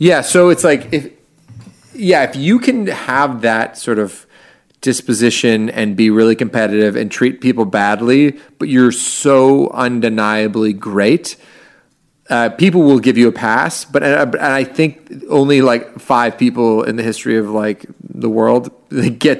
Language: English